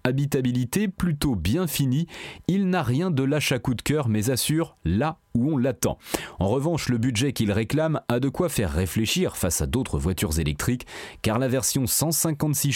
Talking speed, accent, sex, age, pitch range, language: 185 wpm, French, male, 30-49, 105-145 Hz, French